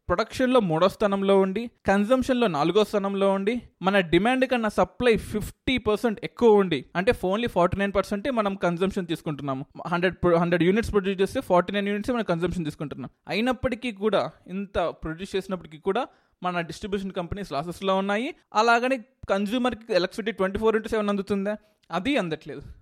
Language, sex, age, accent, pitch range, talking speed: Telugu, male, 20-39, native, 170-220 Hz, 140 wpm